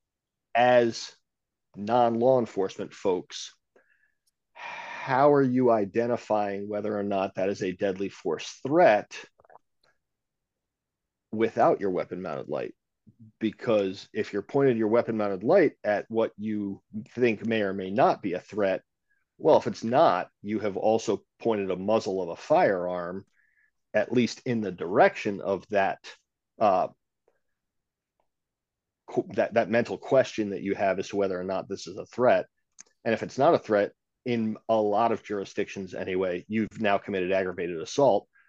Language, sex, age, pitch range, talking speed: English, male, 40-59, 100-115 Hz, 145 wpm